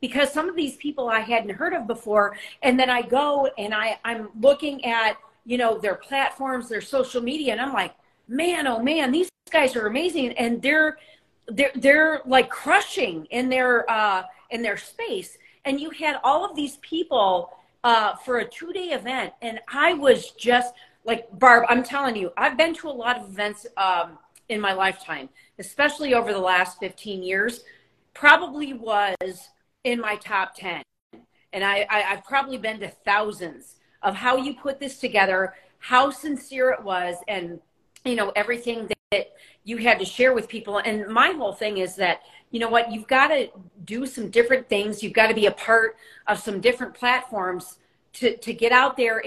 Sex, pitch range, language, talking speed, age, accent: female, 200-265 Hz, English, 185 wpm, 40-59, American